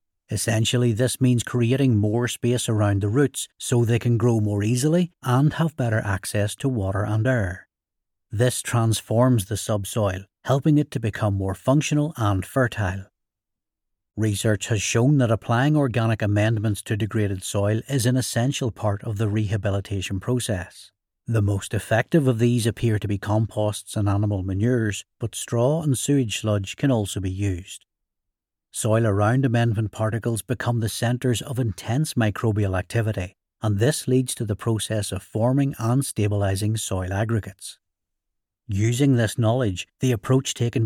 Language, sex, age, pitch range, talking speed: English, male, 60-79, 105-125 Hz, 150 wpm